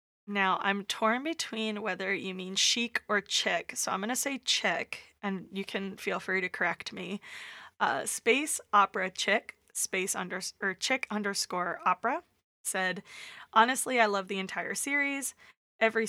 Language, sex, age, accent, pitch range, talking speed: English, female, 20-39, American, 185-225 Hz, 160 wpm